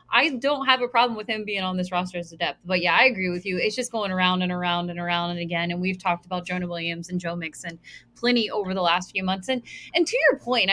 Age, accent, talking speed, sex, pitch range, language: 20-39, American, 280 wpm, female, 180-250 Hz, English